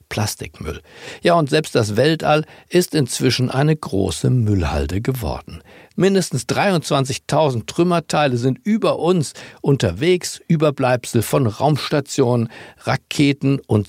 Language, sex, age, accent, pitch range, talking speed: German, male, 60-79, German, 105-160 Hz, 105 wpm